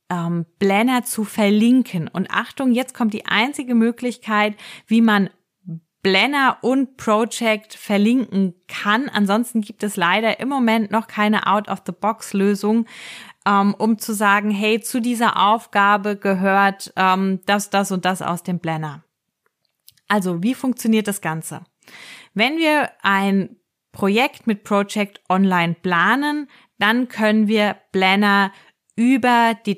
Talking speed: 125 wpm